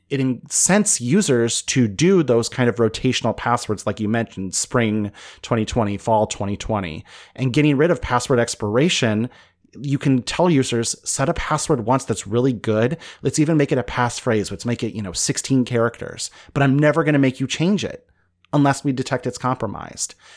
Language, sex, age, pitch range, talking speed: English, male, 30-49, 110-135 Hz, 180 wpm